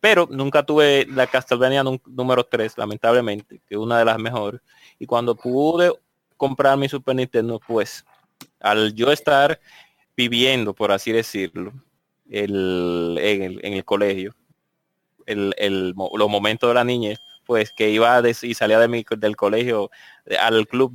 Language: Spanish